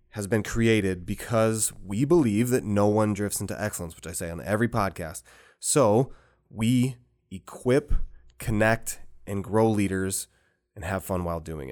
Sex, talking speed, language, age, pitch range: male, 155 wpm, English, 20-39, 90-110 Hz